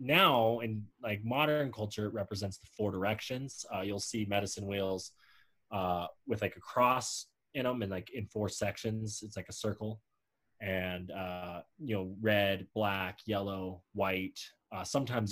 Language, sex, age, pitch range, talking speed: English, male, 20-39, 100-115 Hz, 160 wpm